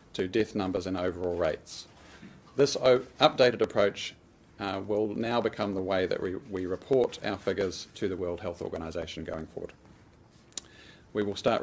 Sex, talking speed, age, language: male, 160 wpm, 40-59, English